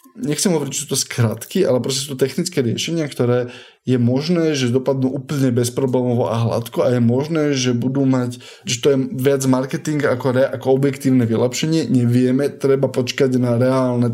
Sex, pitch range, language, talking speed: male, 125-135 Hz, Slovak, 175 wpm